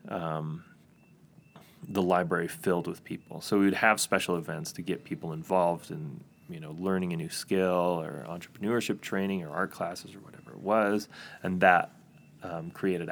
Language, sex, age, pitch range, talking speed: English, male, 30-49, 90-145 Hz, 170 wpm